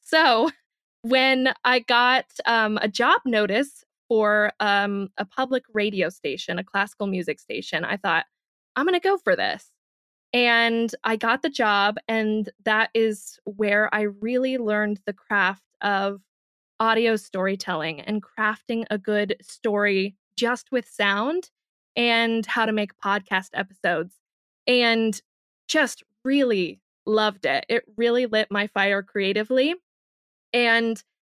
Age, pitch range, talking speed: 20-39, 210-255 Hz, 130 wpm